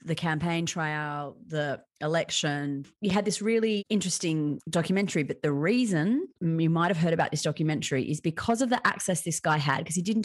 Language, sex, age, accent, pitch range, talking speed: English, female, 30-49, Australian, 150-180 Hz, 180 wpm